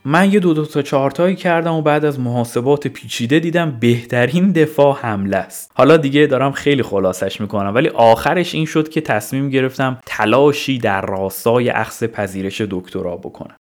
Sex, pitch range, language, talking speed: male, 110-165 Hz, Persian, 160 wpm